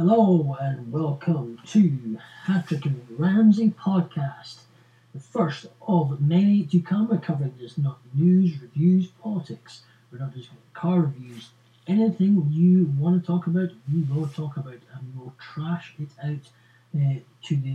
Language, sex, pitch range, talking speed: English, male, 125-165 Hz, 150 wpm